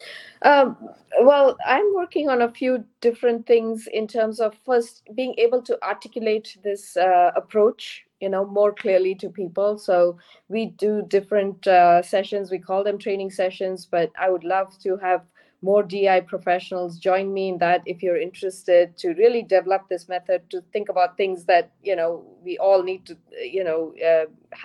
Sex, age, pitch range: female, 20-39, 180-220 Hz